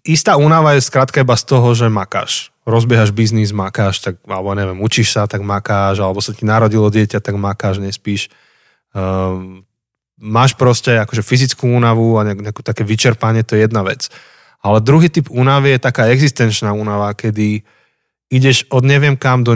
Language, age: Slovak, 20-39